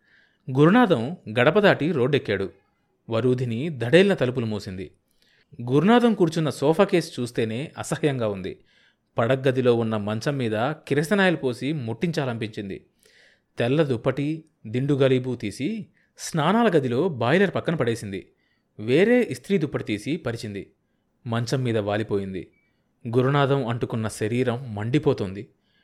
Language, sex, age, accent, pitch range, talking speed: Telugu, male, 30-49, native, 115-170 Hz, 100 wpm